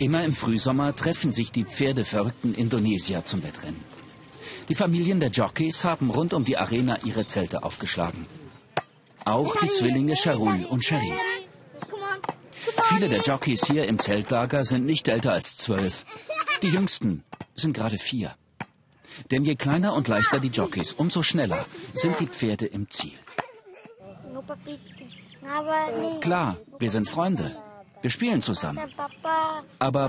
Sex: male